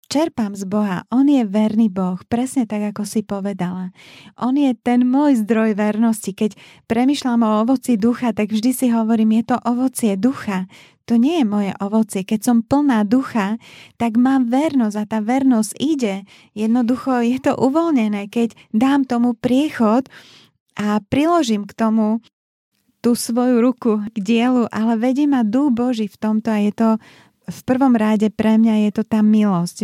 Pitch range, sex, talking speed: 205-240 Hz, female, 165 wpm